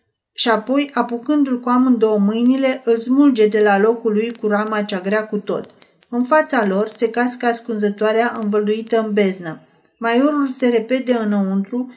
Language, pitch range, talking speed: Romanian, 210-245 Hz, 155 wpm